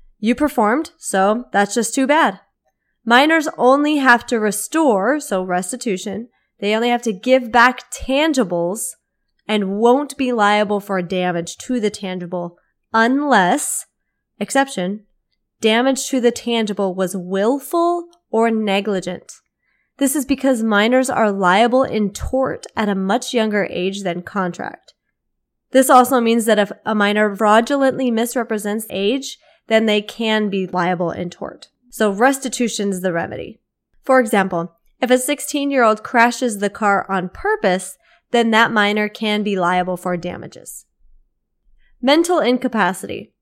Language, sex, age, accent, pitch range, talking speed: English, female, 20-39, American, 195-255 Hz, 135 wpm